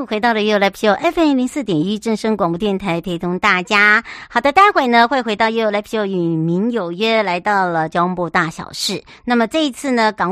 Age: 50-69